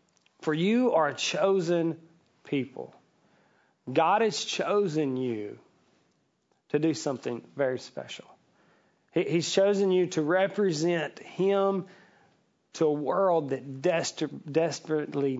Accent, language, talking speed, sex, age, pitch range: American, English, 105 wpm, male, 40-59, 130-175 Hz